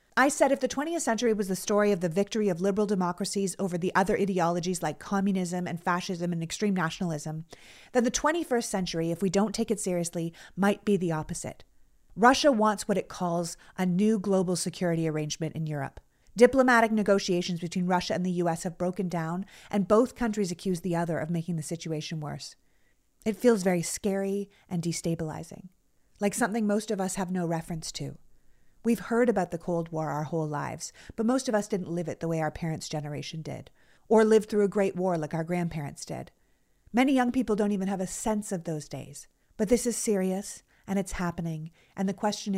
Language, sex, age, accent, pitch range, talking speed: English, female, 30-49, American, 170-210 Hz, 200 wpm